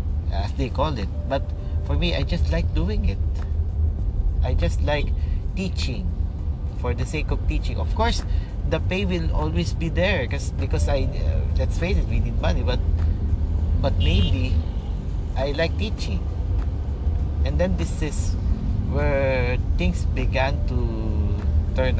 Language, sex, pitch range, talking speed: English, male, 80-90 Hz, 145 wpm